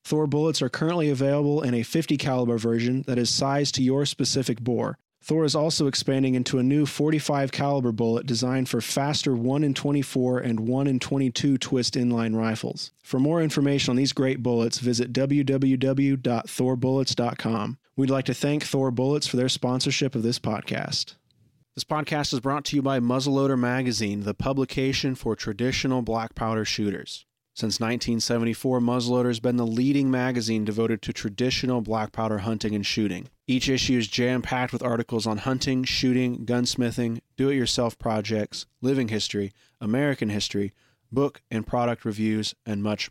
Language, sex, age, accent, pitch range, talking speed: English, male, 30-49, American, 115-135 Hz, 160 wpm